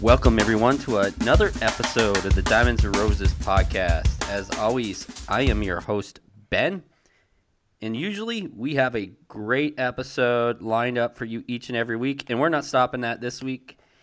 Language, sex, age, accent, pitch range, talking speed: English, male, 20-39, American, 110-135 Hz, 170 wpm